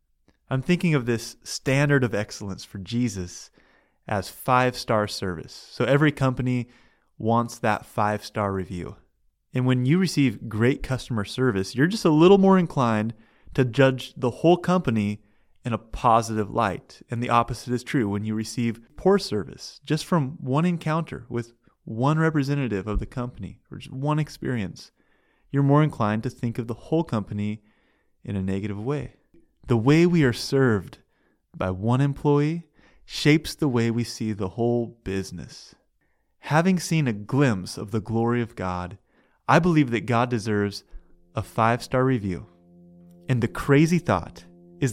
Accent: American